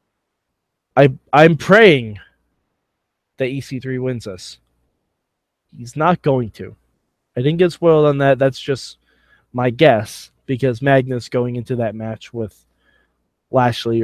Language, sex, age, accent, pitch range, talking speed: English, male, 20-39, American, 120-190 Hz, 125 wpm